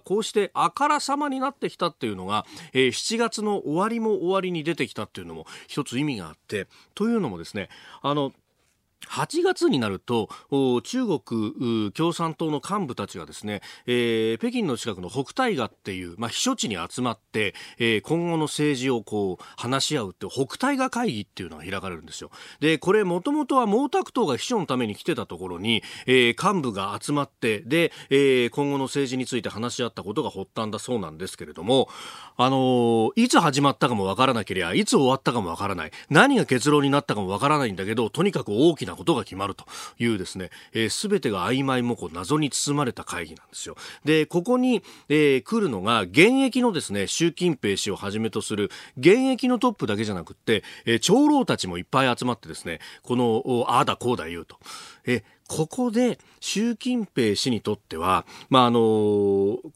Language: Japanese